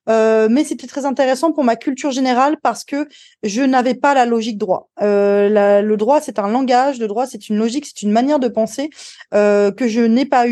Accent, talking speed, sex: French, 220 wpm, female